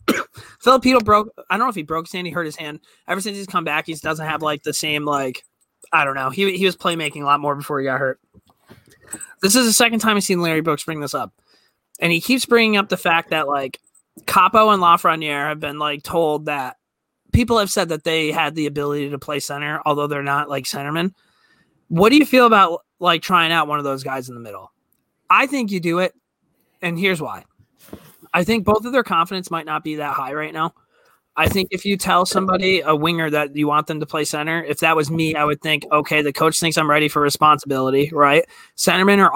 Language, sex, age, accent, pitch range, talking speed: English, male, 20-39, American, 150-190 Hz, 230 wpm